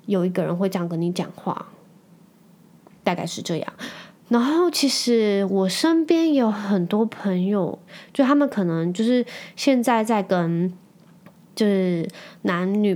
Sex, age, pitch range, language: female, 20-39, 185-245 Hz, Chinese